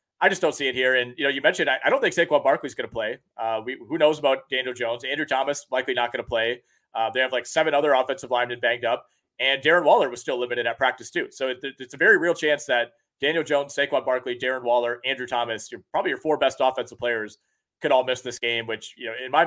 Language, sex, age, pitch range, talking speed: English, male, 30-49, 125-150 Hz, 255 wpm